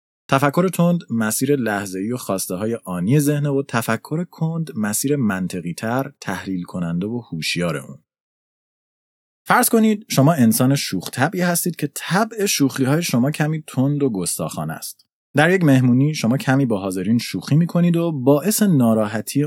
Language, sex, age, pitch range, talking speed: Persian, male, 30-49, 100-155 Hz, 150 wpm